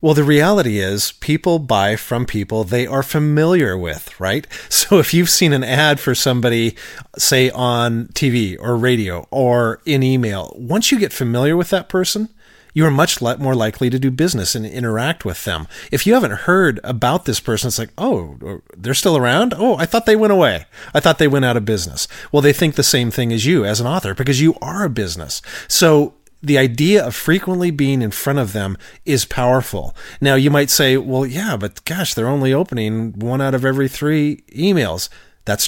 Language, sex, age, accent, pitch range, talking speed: English, male, 40-59, American, 115-150 Hz, 200 wpm